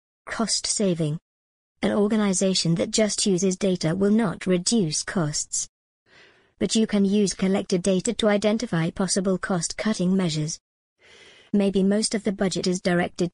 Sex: male